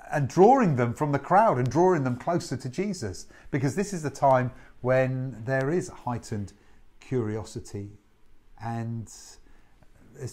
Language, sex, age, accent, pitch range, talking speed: English, male, 50-69, British, 110-145 Hz, 140 wpm